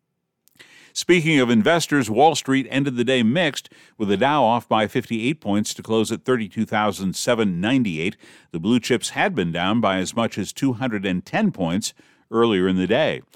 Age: 60-79